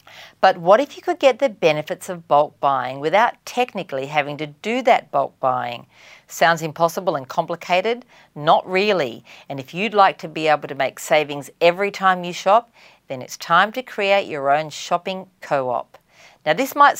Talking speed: 180 wpm